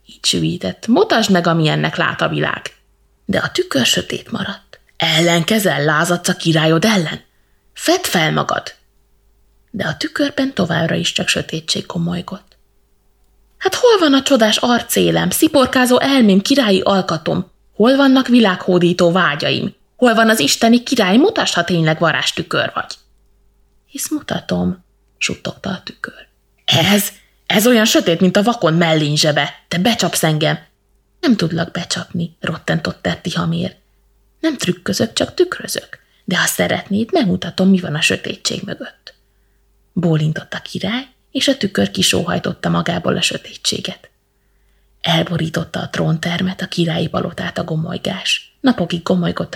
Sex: female